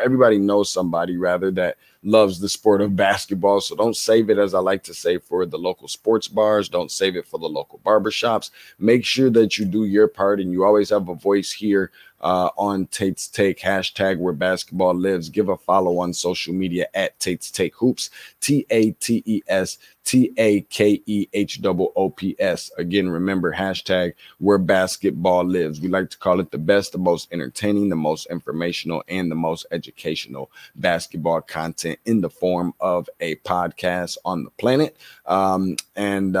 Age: 20-39